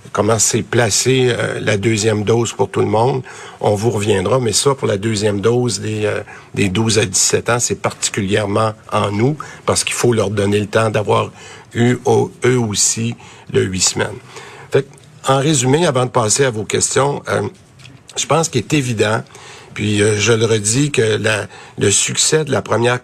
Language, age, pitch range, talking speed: French, 60-79, 105-130 Hz, 190 wpm